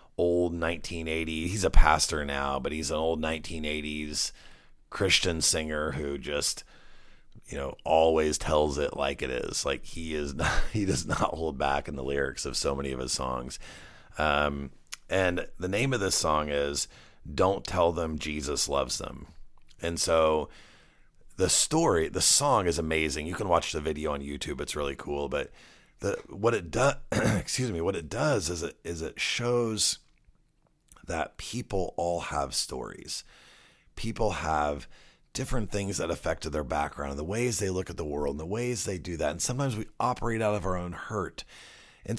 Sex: male